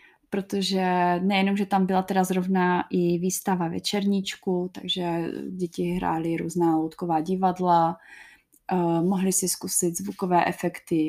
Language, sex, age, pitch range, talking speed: Czech, female, 20-39, 180-195 Hz, 115 wpm